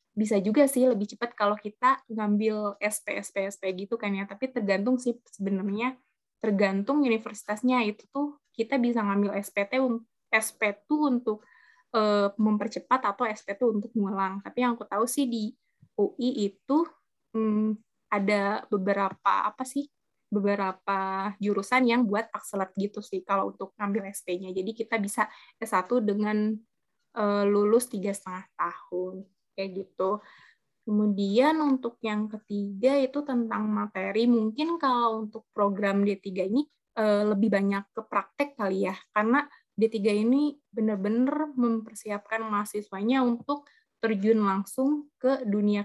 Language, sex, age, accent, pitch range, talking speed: Indonesian, female, 20-39, native, 200-245 Hz, 130 wpm